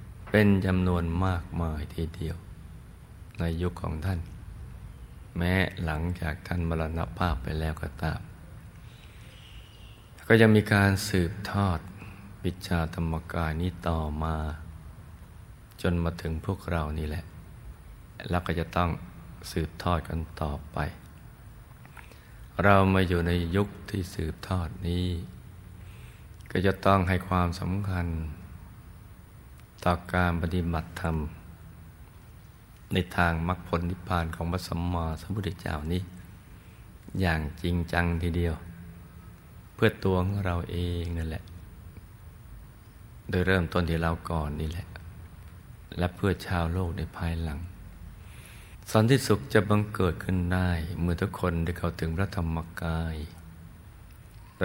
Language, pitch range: Thai, 85-95 Hz